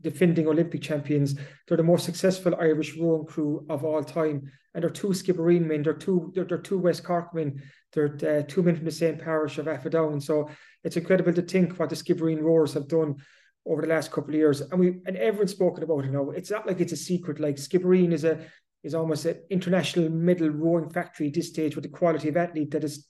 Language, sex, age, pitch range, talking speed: English, male, 30-49, 155-175 Hz, 225 wpm